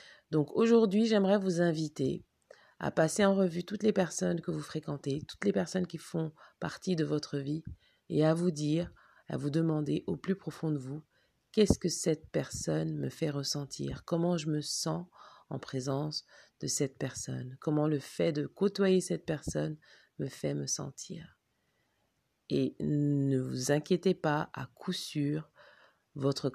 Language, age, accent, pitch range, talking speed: French, 40-59, French, 140-175 Hz, 165 wpm